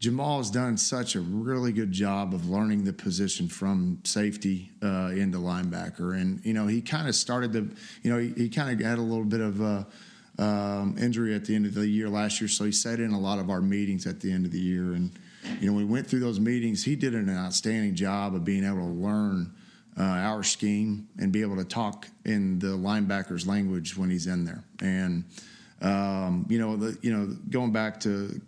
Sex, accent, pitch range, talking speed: male, American, 100-115 Hz, 225 wpm